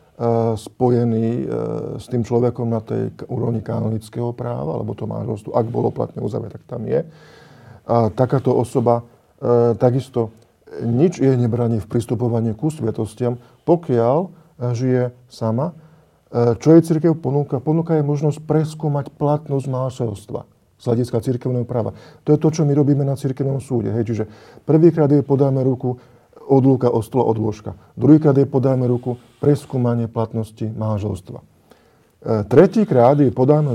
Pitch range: 115-145 Hz